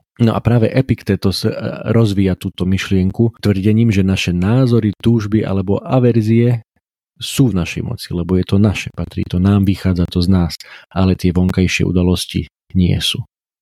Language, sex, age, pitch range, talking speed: Slovak, male, 40-59, 90-105 Hz, 155 wpm